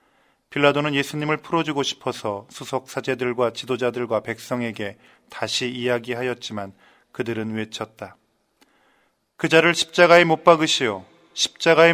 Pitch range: 110-135 Hz